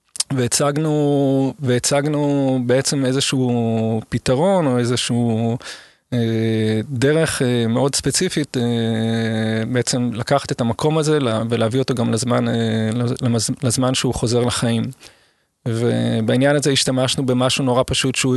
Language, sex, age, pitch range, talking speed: Hebrew, male, 20-39, 115-135 Hz, 110 wpm